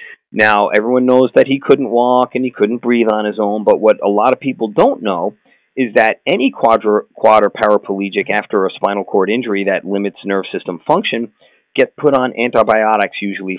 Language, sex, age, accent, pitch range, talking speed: English, male, 40-59, American, 105-130 Hz, 190 wpm